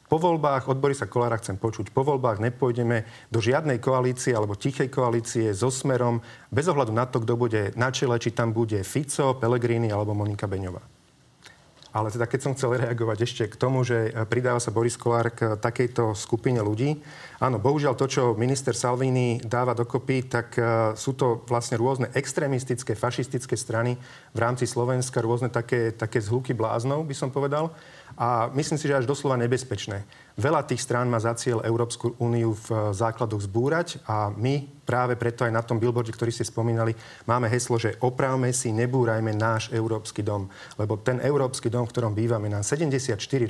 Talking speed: 175 wpm